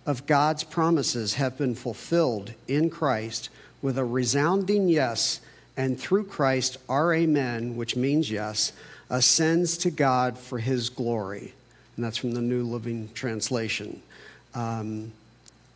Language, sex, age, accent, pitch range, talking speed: English, male, 50-69, American, 120-150 Hz, 130 wpm